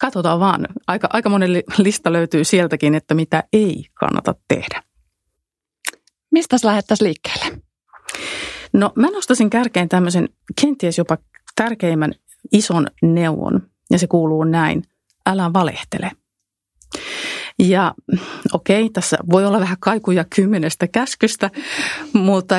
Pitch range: 165-215 Hz